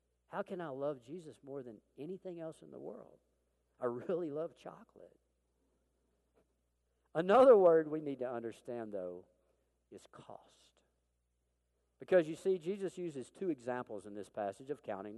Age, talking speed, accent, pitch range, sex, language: 50-69, 145 wpm, American, 105-165 Hz, male, English